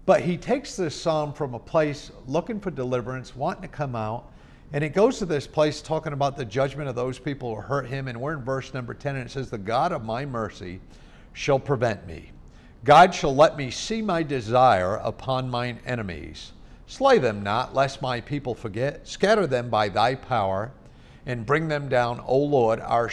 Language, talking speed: English, 200 wpm